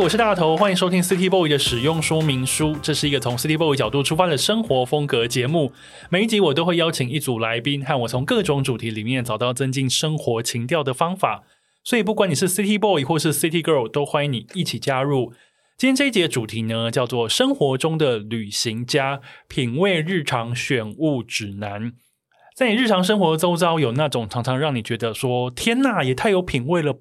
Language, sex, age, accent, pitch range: Chinese, male, 20-39, native, 125-170 Hz